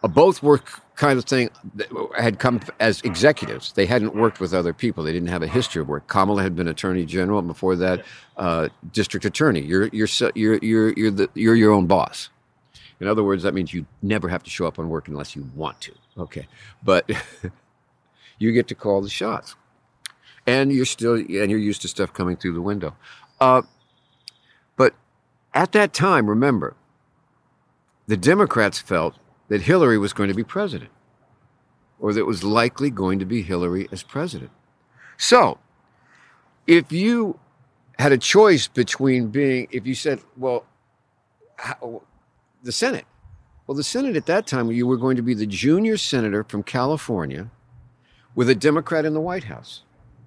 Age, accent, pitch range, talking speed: 50-69, American, 100-135 Hz, 170 wpm